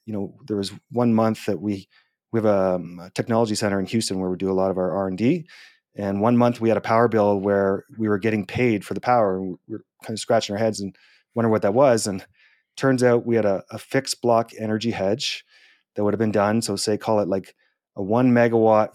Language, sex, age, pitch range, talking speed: English, male, 30-49, 100-120 Hz, 255 wpm